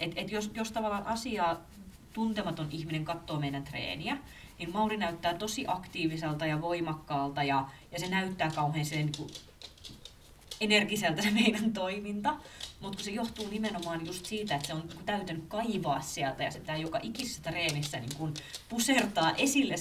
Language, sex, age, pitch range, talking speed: Finnish, female, 30-49, 150-210 Hz, 140 wpm